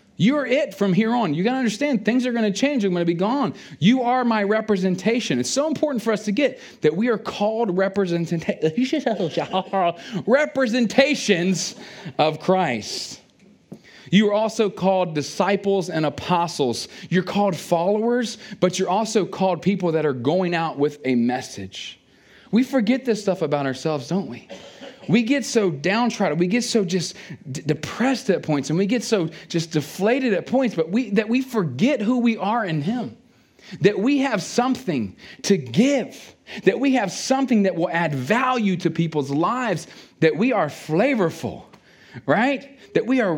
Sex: male